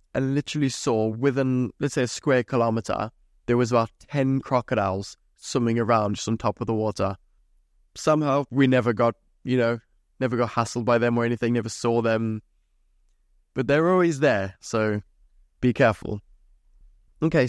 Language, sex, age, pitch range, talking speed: English, male, 20-39, 110-135 Hz, 160 wpm